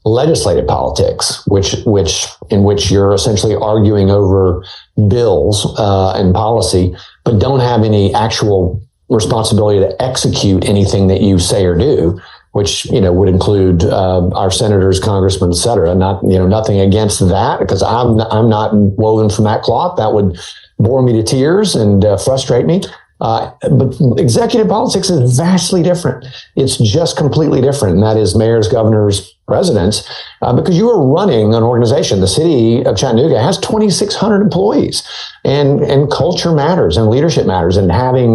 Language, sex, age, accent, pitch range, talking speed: English, male, 50-69, American, 100-130 Hz, 160 wpm